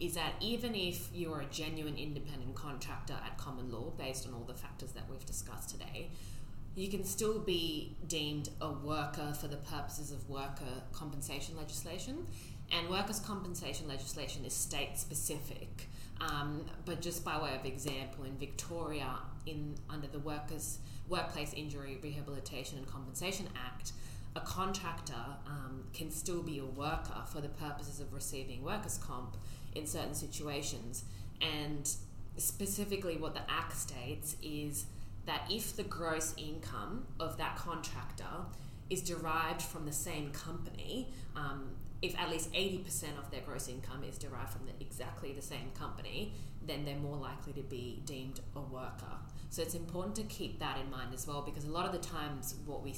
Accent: Australian